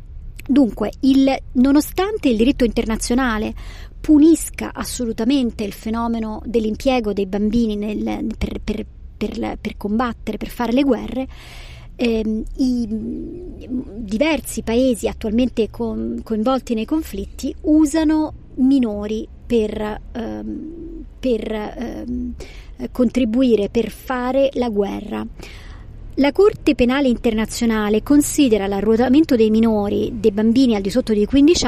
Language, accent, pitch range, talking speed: Italian, native, 215-265 Hz, 100 wpm